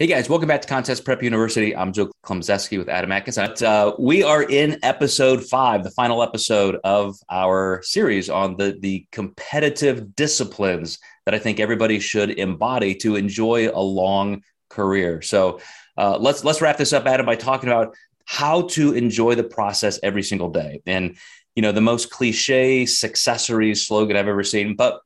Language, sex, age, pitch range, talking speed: English, male, 30-49, 100-125 Hz, 175 wpm